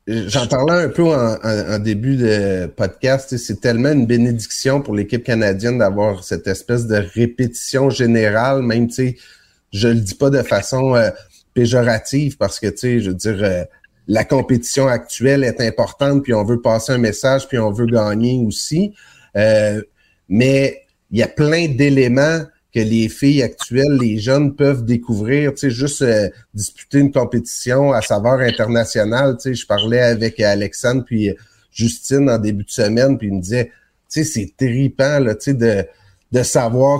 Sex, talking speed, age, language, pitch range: male, 180 wpm, 30-49, French, 115-140 Hz